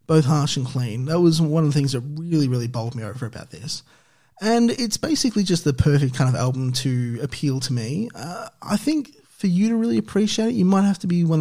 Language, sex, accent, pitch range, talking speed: English, male, Australian, 130-180 Hz, 240 wpm